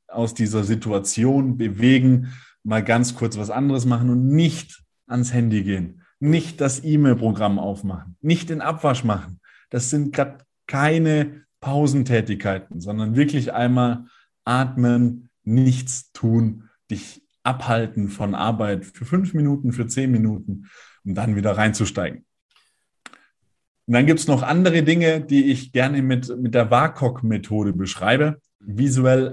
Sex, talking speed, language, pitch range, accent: male, 130 wpm, German, 115-140 Hz, German